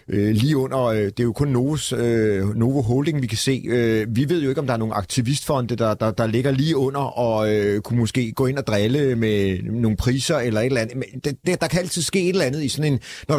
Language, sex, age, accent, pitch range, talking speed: Danish, male, 40-59, native, 115-145 Hz, 250 wpm